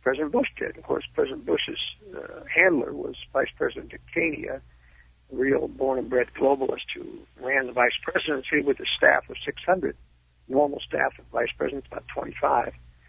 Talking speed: 155 wpm